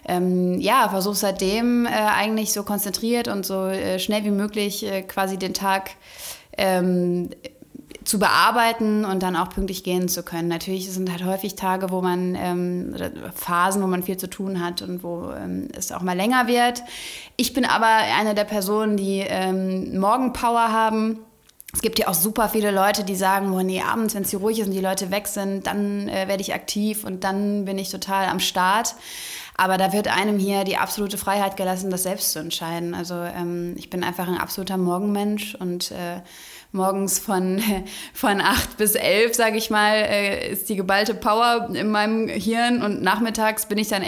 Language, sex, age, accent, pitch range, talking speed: German, female, 20-39, German, 185-210 Hz, 190 wpm